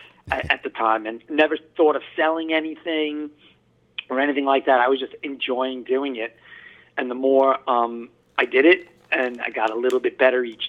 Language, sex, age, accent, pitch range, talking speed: English, male, 40-59, American, 120-155 Hz, 190 wpm